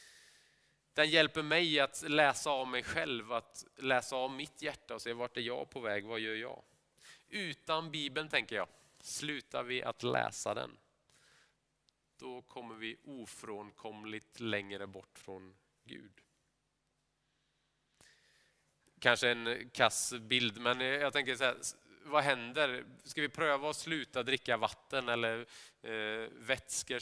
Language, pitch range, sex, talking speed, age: Swedish, 115-145 Hz, male, 135 wpm, 30-49